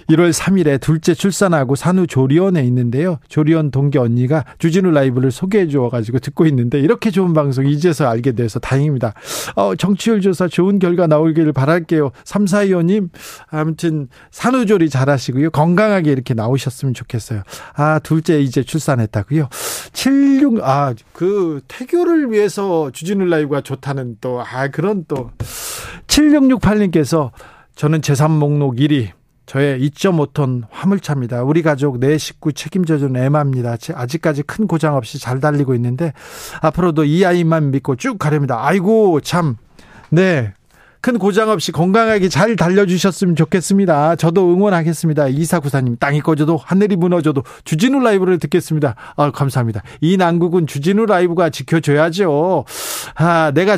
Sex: male